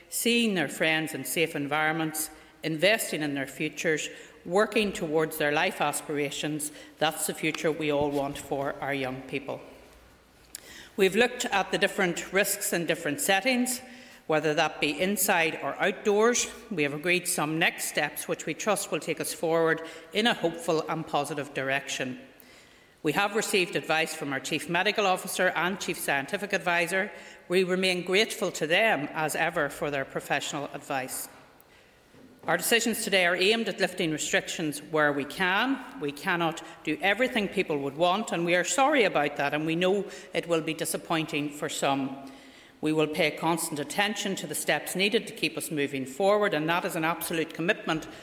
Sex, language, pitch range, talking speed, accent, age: female, English, 150-190 Hz, 170 wpm, Irish, 60-79